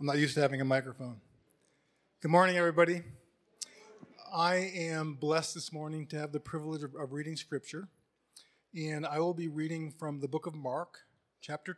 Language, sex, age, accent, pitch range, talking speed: English, male, 40-59, American, 140-170 Hz, 175 wpm